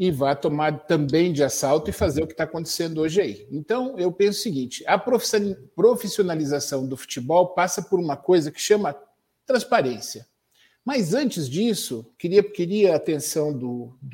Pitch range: 135-180 Hz